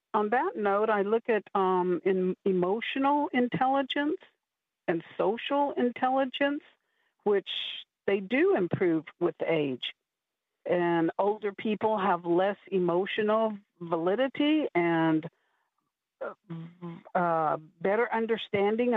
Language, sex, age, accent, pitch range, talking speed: English, female, 60-79, American, 180-225 Hz, 95 wpm